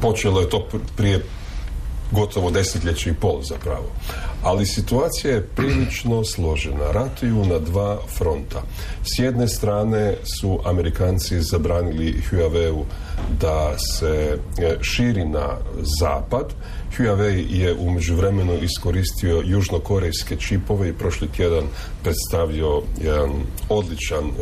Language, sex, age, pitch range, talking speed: Croatian, male, 40-59, 75-100 Hz, 110 wpm